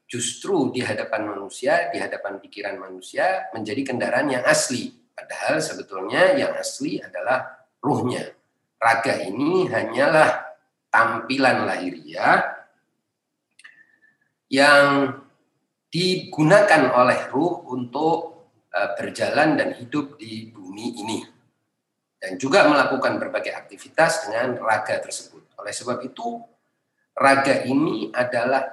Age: 40-59